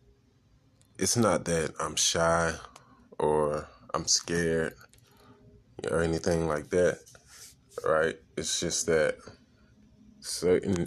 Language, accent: English, American